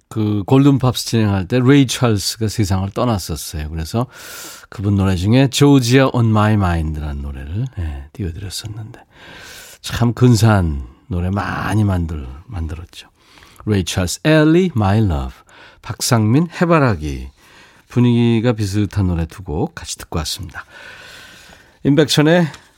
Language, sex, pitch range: Korean, male, 95-125 Hz